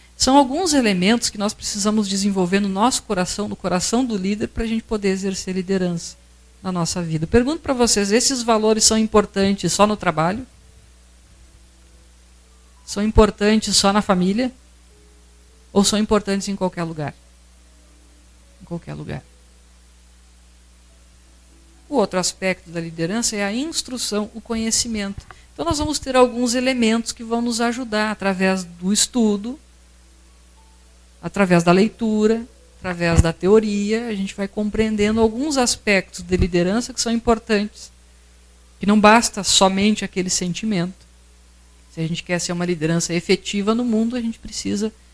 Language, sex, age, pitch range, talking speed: Portuguese, female, 50-69, 155-220 Hz, 140 wpm